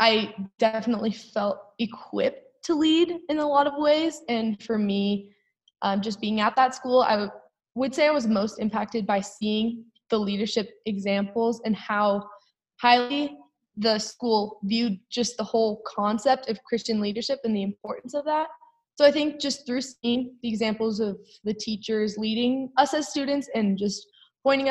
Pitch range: 205-255 Hz